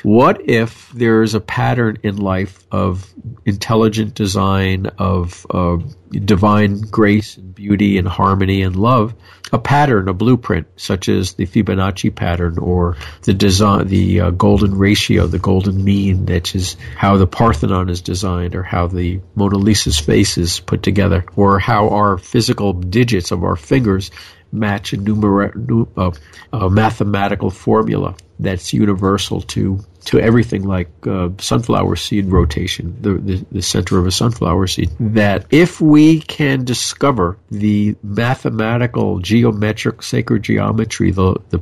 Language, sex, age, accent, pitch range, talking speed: English, male, 50-69, American, 95-115 Hz, 145 wpm